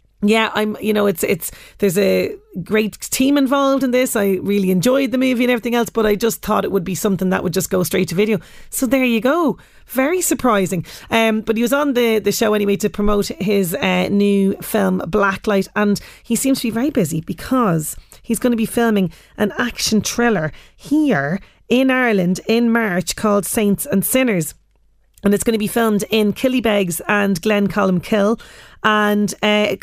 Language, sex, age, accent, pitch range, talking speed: English, female, 30-49, Irish, 195-230 Hz, 195 wpm